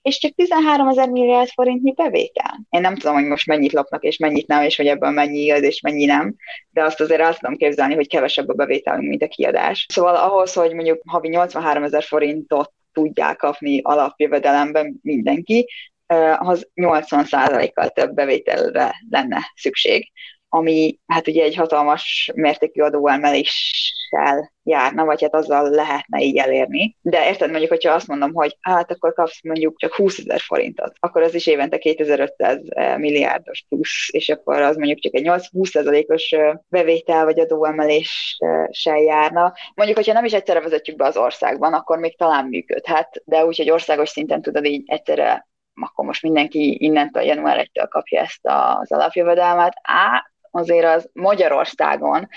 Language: Hungarian